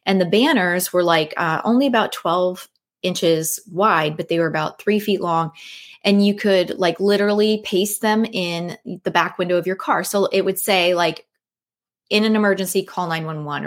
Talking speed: 185 wpm